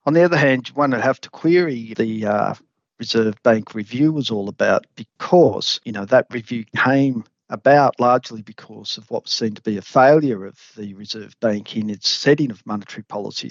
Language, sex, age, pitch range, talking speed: English, male, 40-59, 105-130 Hz, 190 wpm